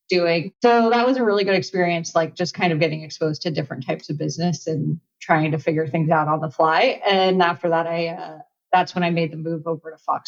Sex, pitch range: female, 165-180 Hz